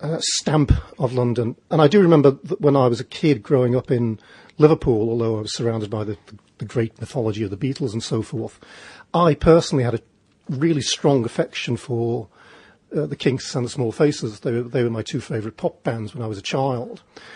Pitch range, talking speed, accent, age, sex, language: 115-150 Hz, 205 wpm, British, 40-59, male, English